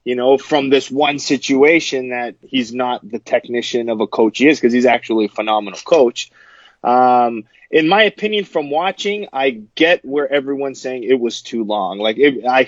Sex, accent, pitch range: male, American, 130-165 Hz